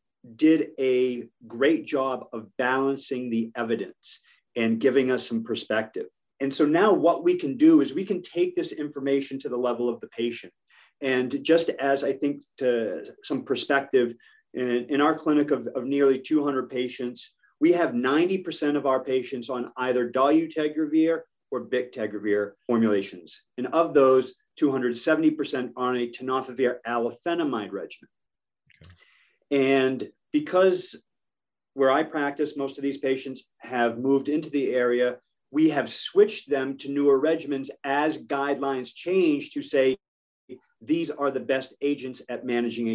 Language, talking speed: English, 145 wpm